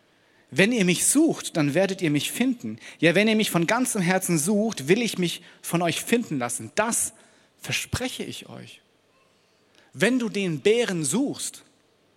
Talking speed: 165 wpm